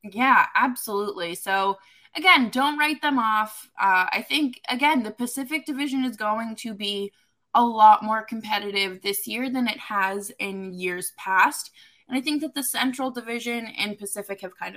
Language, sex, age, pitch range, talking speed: English, female, 20-39, 195-245 Hz, 170 wpm